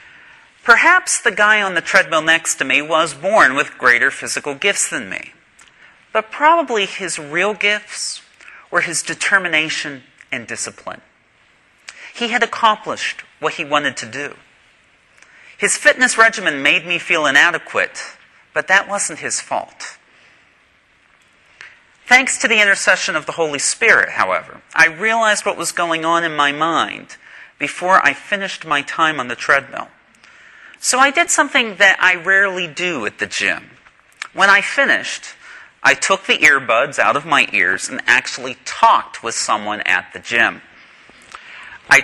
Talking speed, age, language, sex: 150 wpm, 40-59, English, male